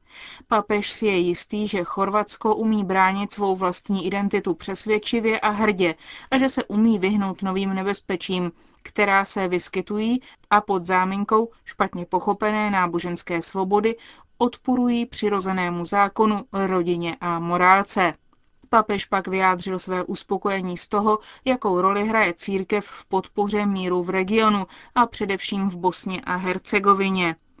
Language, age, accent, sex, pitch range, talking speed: Czech, 30-49, native, female, 185-215 Hz, 130 wpm